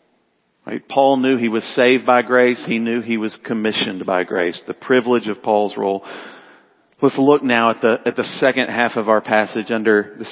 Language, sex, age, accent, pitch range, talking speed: English, male, 40-59, American, 110-135 Hz, 190 wpm